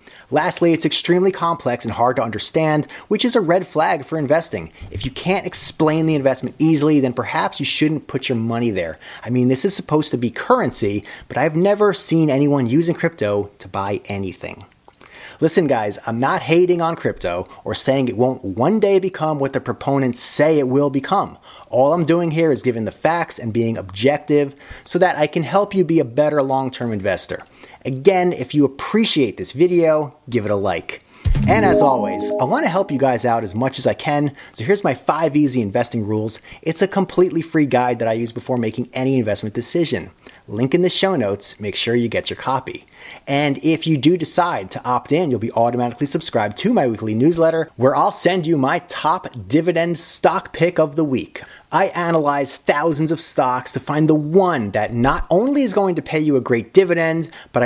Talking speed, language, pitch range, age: 205 wpm, English, 120-165 Hz, 30-49